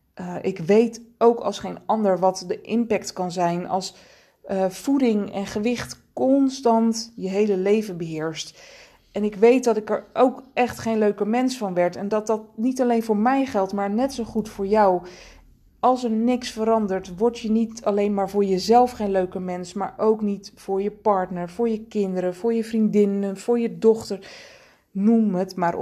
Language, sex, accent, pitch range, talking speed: Dutch, female, Dutch, 190-225 Hz, 190 wpm